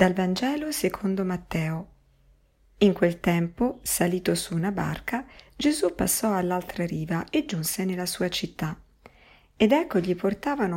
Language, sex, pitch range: Italian, female, 160-200 Hz